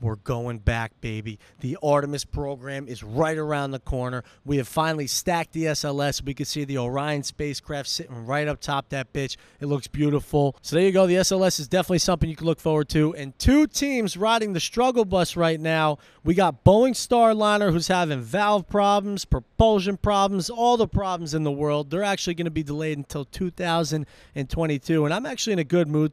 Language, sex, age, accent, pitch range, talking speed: English, male, 30-49, American, 140-185 Hz, 200 wpm